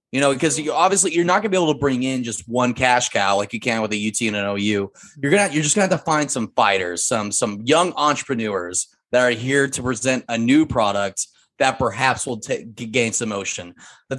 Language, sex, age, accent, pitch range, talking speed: English, male, 20-39, American, 115-155 Hz, 240 wpm